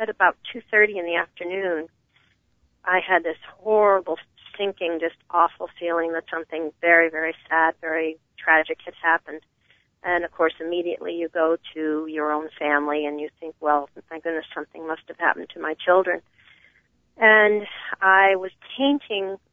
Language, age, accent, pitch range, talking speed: English, 40-59, American, 160-190 Hz, 155 wpm